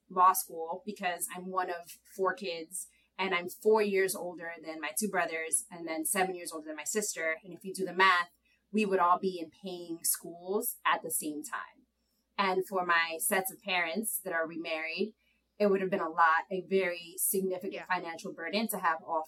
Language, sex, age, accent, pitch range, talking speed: English, female, 20-39, American, 165-205 Hz, 200 wpm